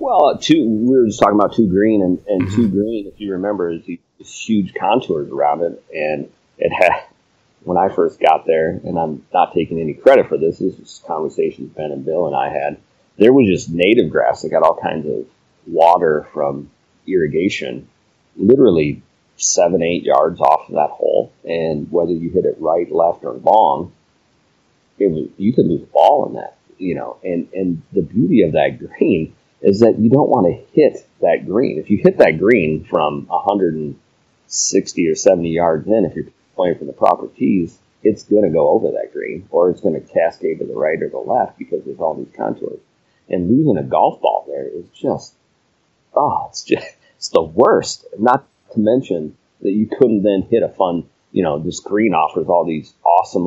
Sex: male